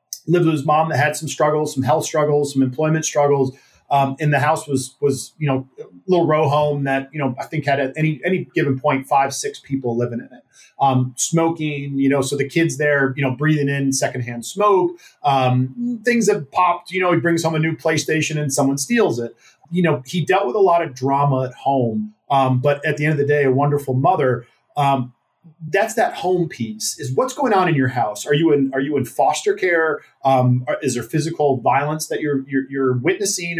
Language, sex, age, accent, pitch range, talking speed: English, male, 30-49, American, 135-160 Hz, 220 wpm